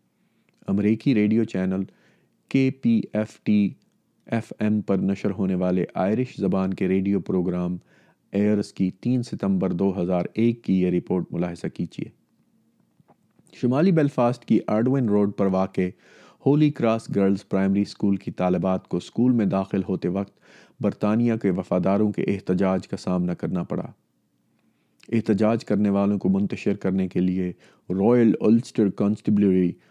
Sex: male